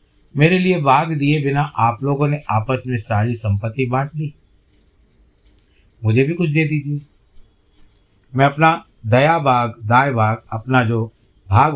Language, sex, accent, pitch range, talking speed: Hindi, male, native, 100-140 Hz, 145 wpm